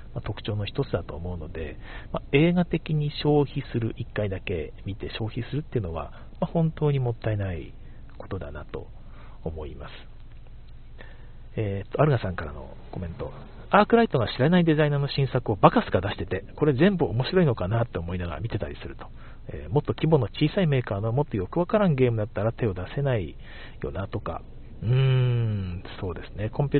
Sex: male